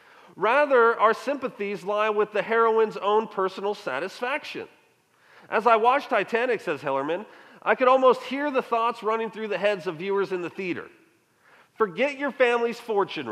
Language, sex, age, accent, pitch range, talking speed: English, male, 40-59, American, 200-265 Hz, 160 wpm